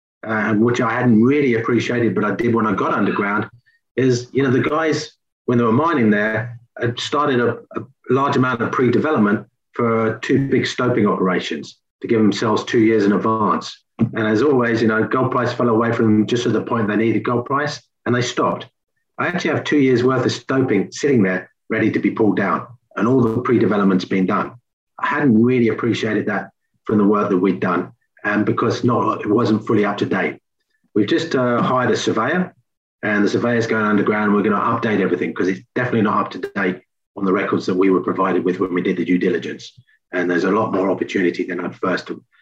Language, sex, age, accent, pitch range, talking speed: English, male, 30-49, British, 110-125 Hz, 220 wpm